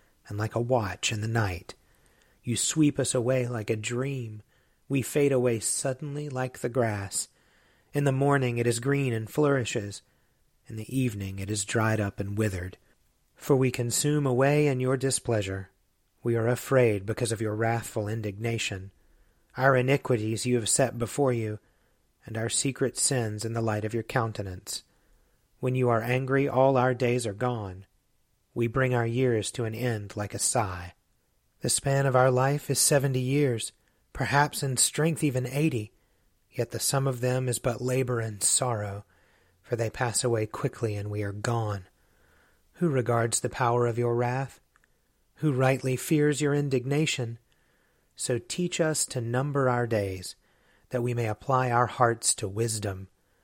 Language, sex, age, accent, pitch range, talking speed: English, male, 40-59, American, 110-130 Hz, 165 wpm